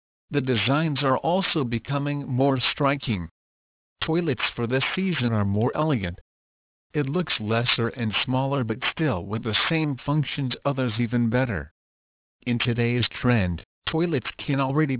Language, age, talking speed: English, 50-69, 135 wpm